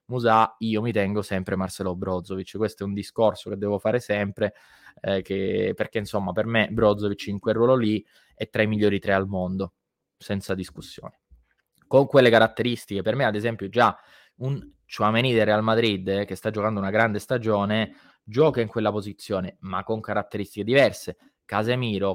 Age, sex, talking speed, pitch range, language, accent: 20-39, male, 170 wpm, 100-115 Hz, Italian, native